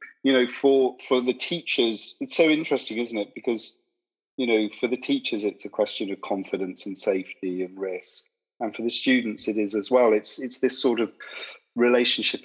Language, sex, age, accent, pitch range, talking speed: English, male, 40-59, British, 105-130 Hz, 195 wpm